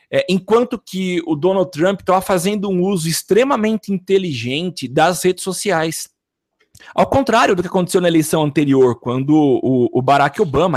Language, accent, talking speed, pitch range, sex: Portuguese, Brazilian, 150 wpm, 145-195 Hz, male